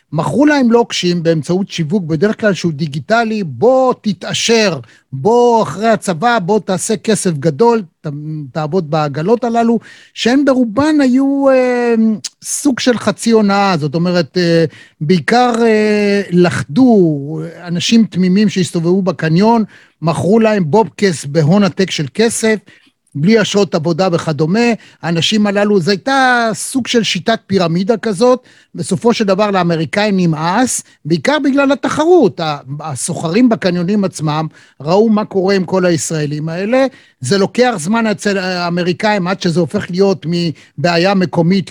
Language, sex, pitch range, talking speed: Hebrew, male, 170-230 Hz, 130 wpm